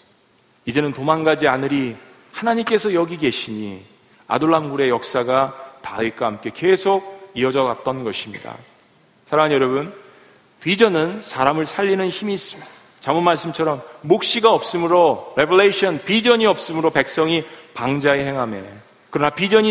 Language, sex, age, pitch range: Korean, male, 40-59, 160-220 Hz